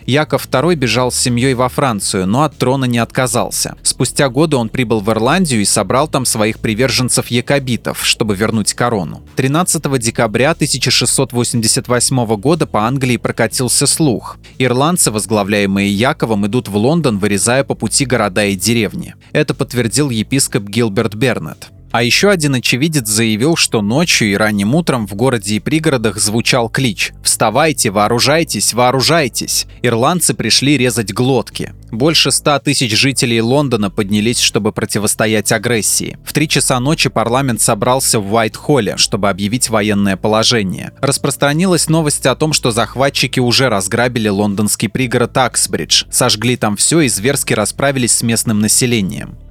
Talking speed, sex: 140 wpm, male